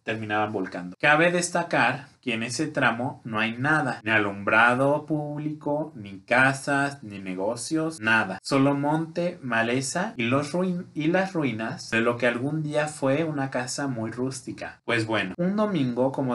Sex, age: male, 30-49